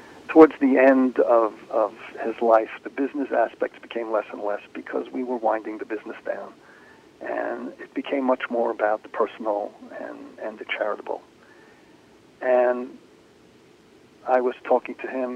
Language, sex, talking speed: English, male, 150 wpm